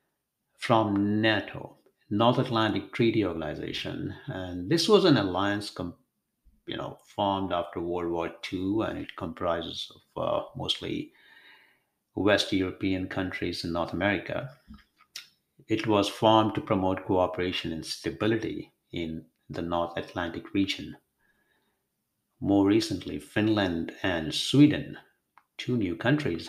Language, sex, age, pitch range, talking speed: English, male, 60-79, 95-115 Hz, 110 wpm